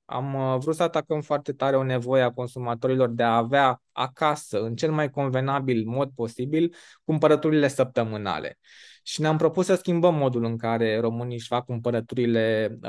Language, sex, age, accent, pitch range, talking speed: Romanian, male, 20-39, native, 125-150 Hz, 160 wpm